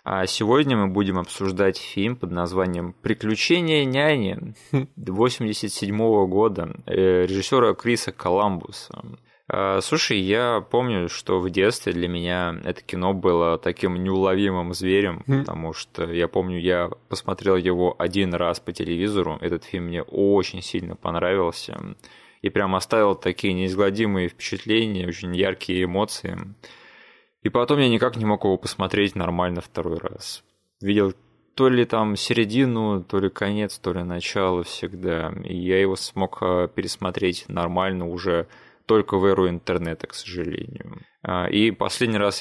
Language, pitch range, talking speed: Russian, 90-105 Hz, 135 wpm